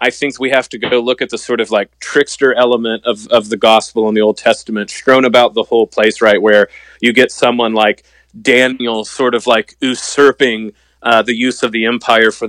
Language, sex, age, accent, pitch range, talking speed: English, male, 30-49, American, 115-145 Hz, 215 wpm